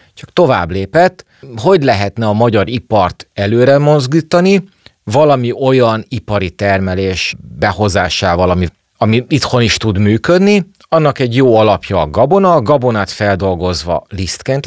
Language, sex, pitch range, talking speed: Hungarian, male, 95-135 Hz, 125 wpm